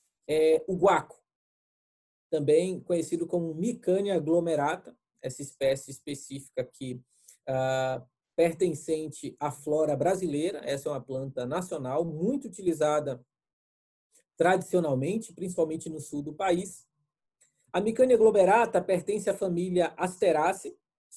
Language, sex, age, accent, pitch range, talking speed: Portuguese, male, 20-39, Brazilian, 150-205 Hz, 100 wpm